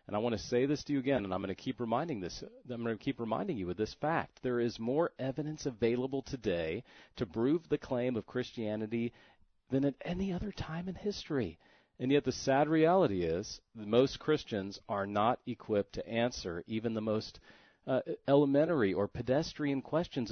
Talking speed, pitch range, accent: 190 wpm, 110-140 Hz, American